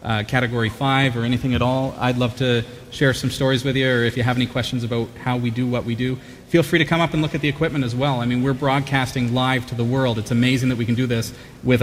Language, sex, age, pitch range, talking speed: English, male, 30-49, 115-130 Hz, 285 wpm